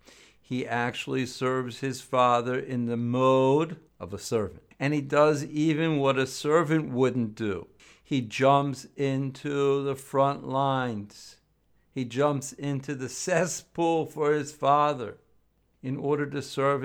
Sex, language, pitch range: male, English, 120-145 Hz